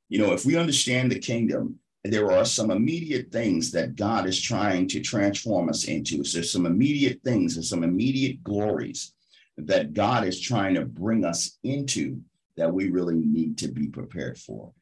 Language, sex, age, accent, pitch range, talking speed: English, male, 50-69, American, 90-120 Hz, 180 wpm